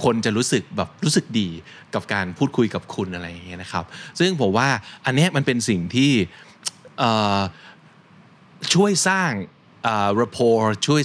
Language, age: Thai, 20-39